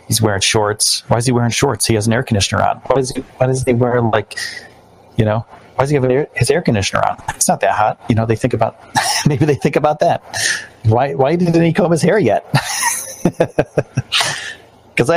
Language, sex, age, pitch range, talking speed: English, male, 40-59, 110-145 Hz, 210 wpm